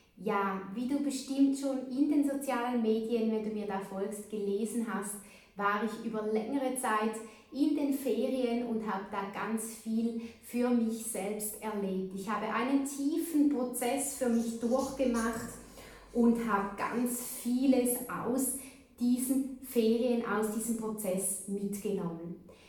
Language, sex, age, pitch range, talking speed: German, female, 20-39, 200-245 Hz, 140 wpm